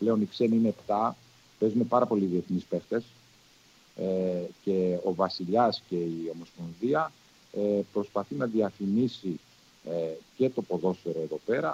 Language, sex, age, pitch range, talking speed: Greek, male, 40-59, 90-125 Hz, 125 wpm